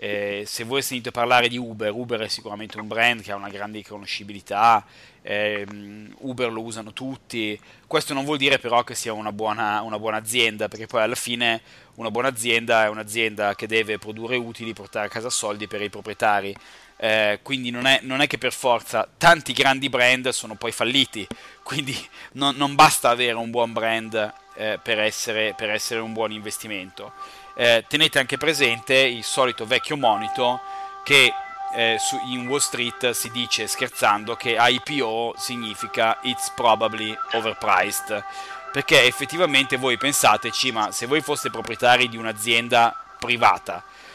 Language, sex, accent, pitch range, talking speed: Italian, male, native, 110-130 Hz, 160 wpm